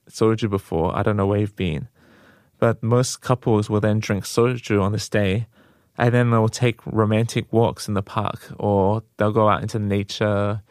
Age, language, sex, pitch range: 20-39, Korean, male, 105-120 Hz